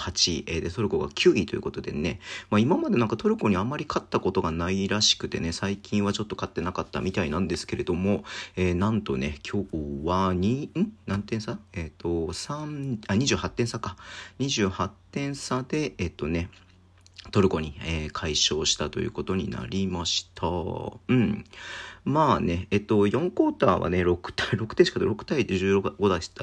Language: Japanese